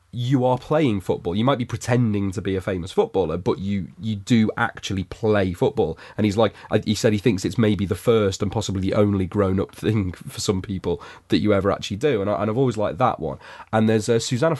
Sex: male